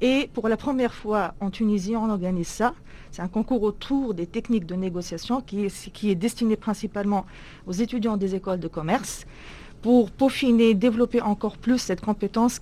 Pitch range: 185-220 Hz